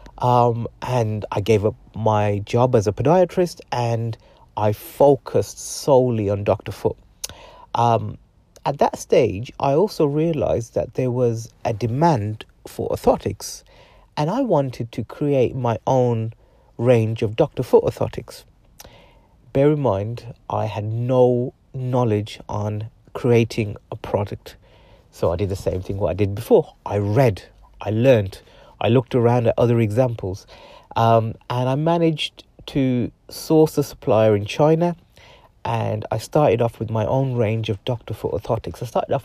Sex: male